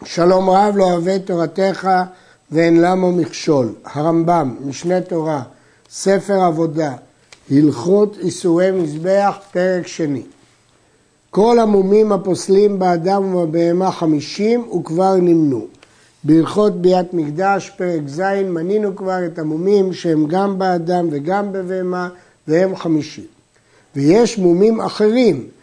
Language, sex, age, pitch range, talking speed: Hebrew, male, 60-79, 165-205 Hz, 105 wpm